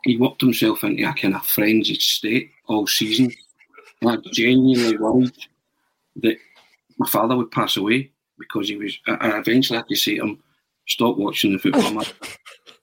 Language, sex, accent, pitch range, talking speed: English, male, British, 110-130 Hz, 175 wpm